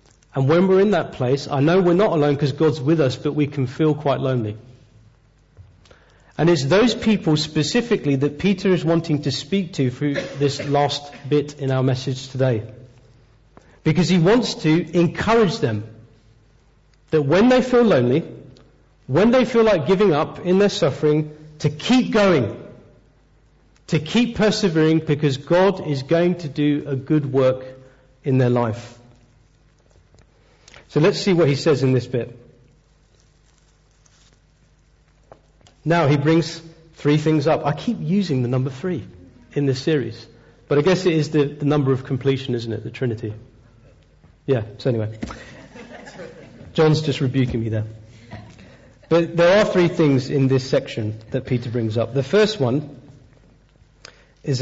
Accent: British